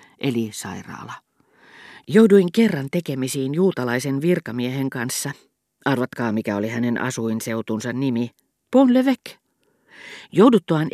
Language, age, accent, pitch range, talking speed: Finnish, 40-59, native, 120-155 Hz, 90 wpm